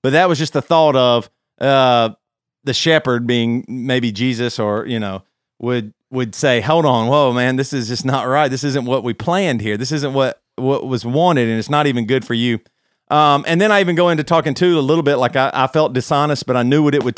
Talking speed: 245 wpm